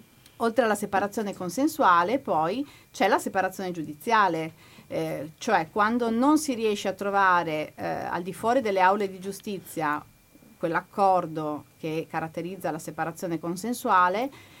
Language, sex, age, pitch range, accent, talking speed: Italian, female, 30-49, 180-250 Hz, native, 125 wpm